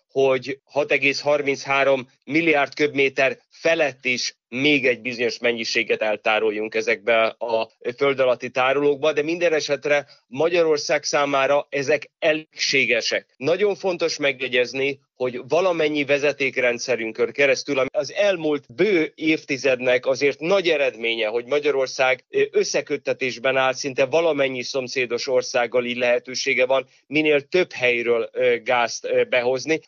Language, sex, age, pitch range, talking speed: Hungarian, male, 30-49, 125-155 Hz, 110 wpm